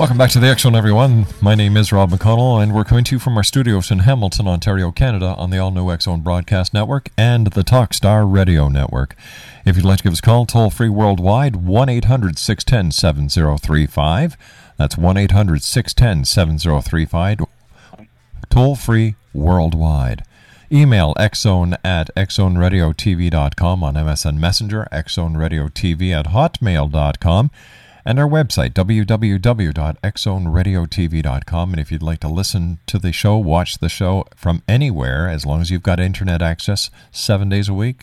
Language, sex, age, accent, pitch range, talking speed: English, male, 50-69, American, 85-110 Hz, 140 wpm